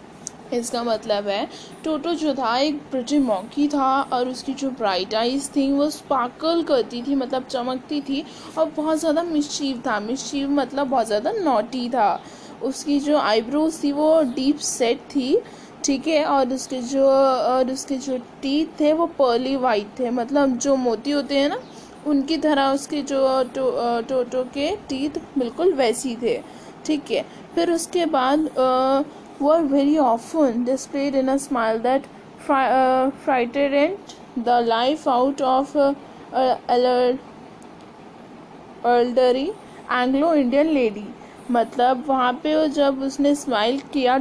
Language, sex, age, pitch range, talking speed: English, female, 10-29, 245-290 Hz, 130 wpm